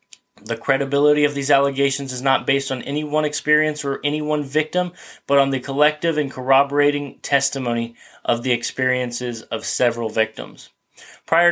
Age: 20-39